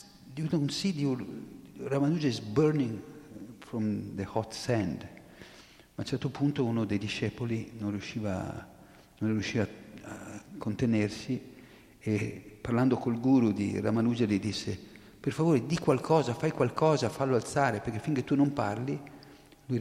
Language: Italian